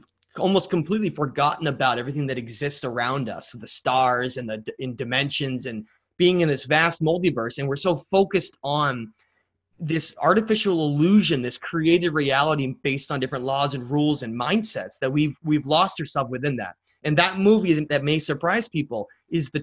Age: 30-49